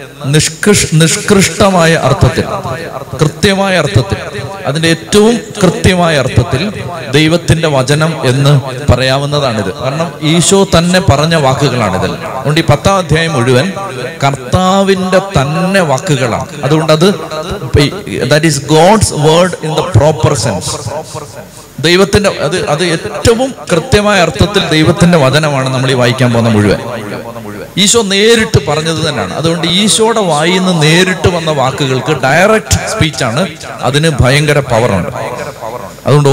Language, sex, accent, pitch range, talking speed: Malayalam, male, native, 130-170 Hz, 100 wpm